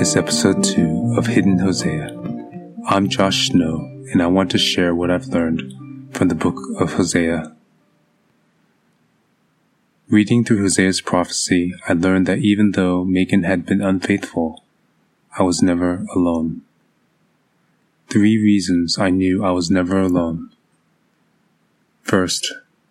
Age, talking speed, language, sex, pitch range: 20-39, 125 wpm, English, male, 90-100 Hz